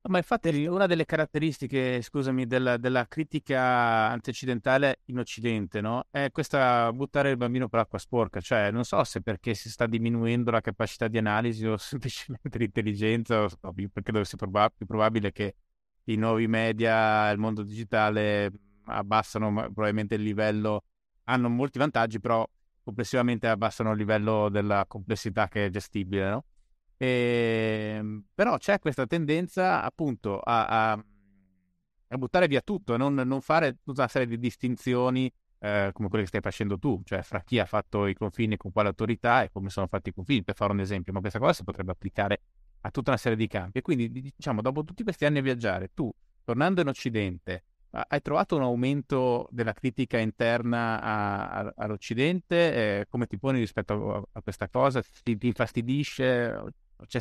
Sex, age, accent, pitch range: male, 30-49, native, 105-130 Hz